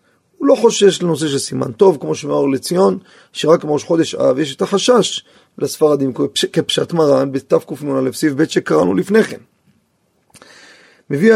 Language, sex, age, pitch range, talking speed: Hebrew, male, 30-49, 140-185 Hz, 145 wpm